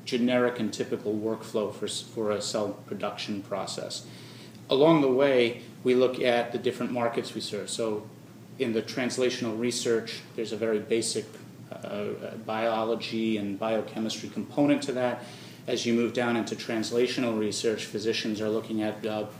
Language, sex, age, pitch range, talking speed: English, male, 30-49, 110-125 Hz, 150 wpm